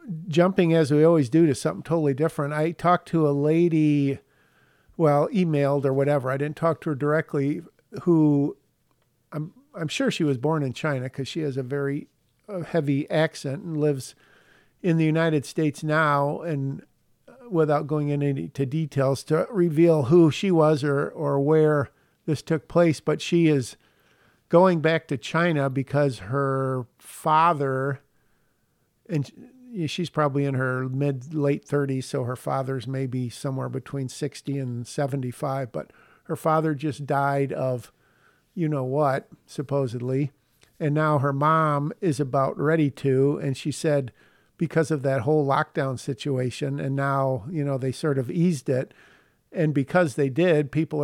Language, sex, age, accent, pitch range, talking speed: English, male, 50-69, American, 135-160 Hz, 155 wpm